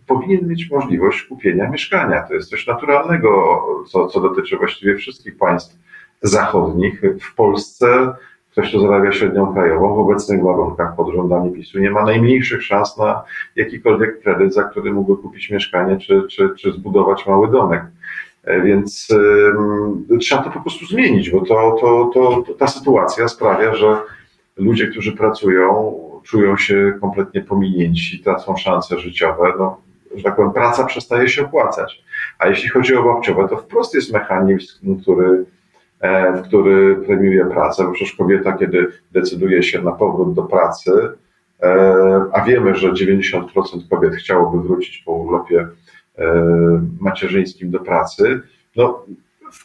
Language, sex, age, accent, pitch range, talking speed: Polish, male, 40-59, native, 95-130 Hz, 145 wpm